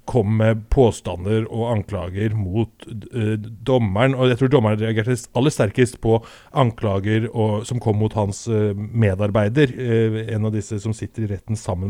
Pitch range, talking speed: 105-125 Hz, 155 wpm